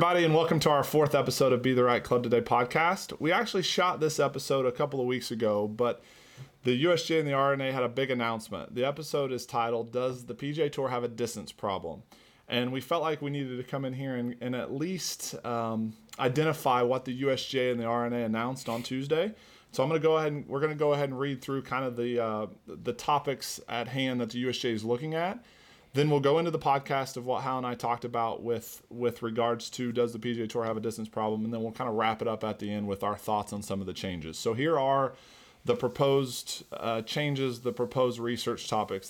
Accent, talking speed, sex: American, 240 wpm, male